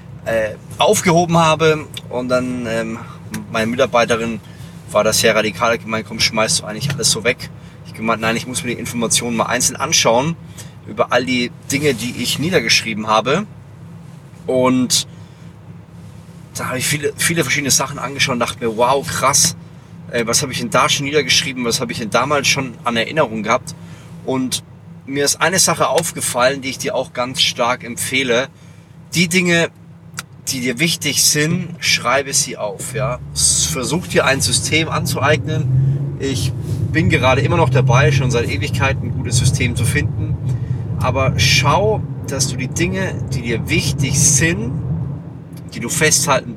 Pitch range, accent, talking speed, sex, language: 125-150 Hz, German, 160 wpm, male, German